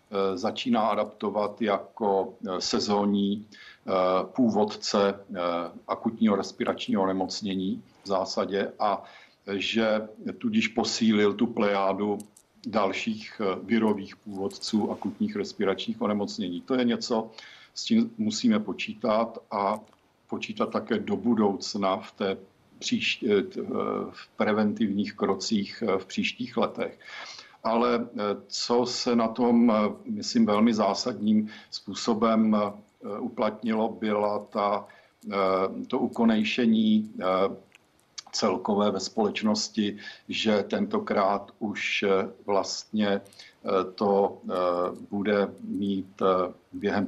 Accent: native